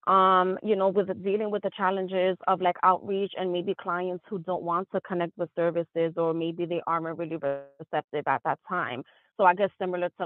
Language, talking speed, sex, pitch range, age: English, 205 wpm, female, 175-200 Hz, 20-39